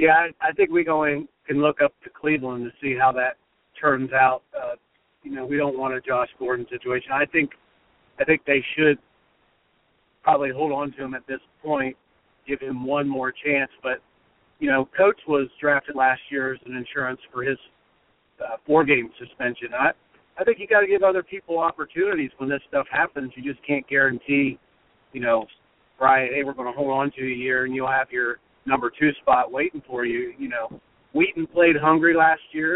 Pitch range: 135-160 Hz